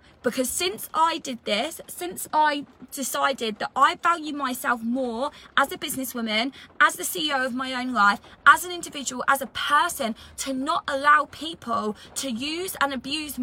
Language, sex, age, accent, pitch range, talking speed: English, female, 20-39, British, 240-300 Hz, 165 wpm